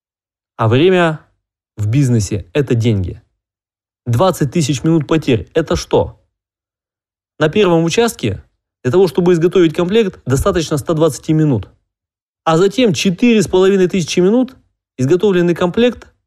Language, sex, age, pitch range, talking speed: Russian, male, 20-39, 115-175 Hz, 120 wpm